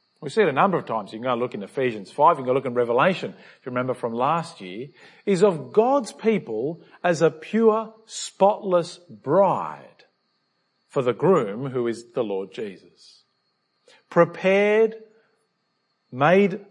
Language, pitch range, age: English, 150-200 Hz, 50-69